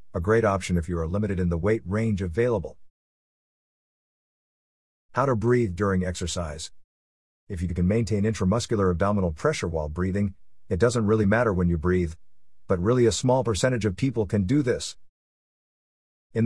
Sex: male